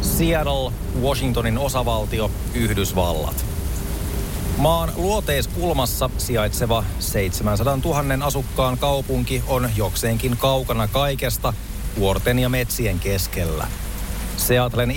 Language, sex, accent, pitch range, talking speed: Finnish, male, native, 95-130 Hz, 80 wpm